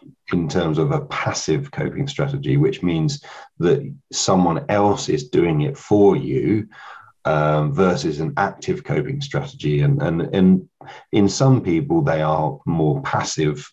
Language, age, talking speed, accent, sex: English, 40-59, 145 wpm, British, male